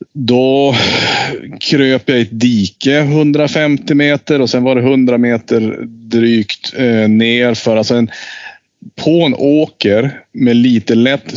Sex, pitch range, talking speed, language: male, 105-130 Hz, 145 wpm, Swedish